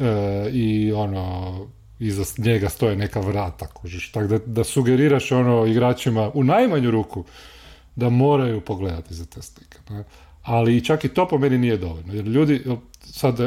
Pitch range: 100-130 Hz